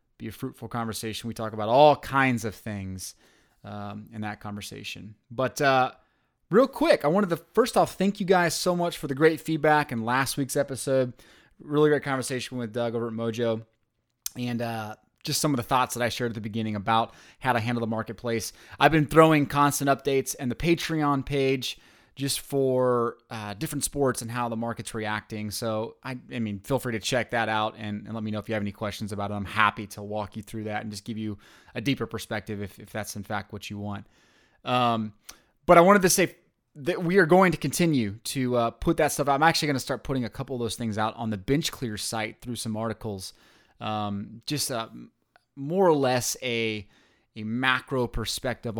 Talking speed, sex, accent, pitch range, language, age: 215 wpm, male, American, 110-135 Hz, English, 20-39